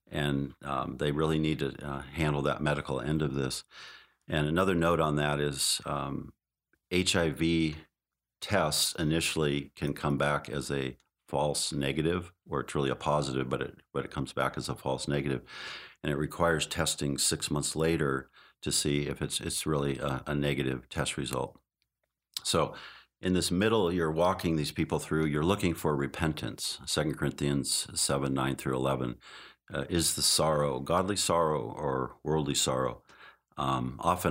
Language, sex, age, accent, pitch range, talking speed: English, male, 50-69, American, 70-80 Hz, 165 wpm